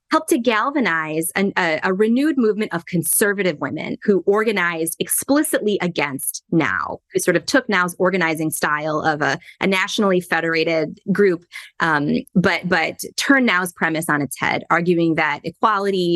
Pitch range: 160-215 Hz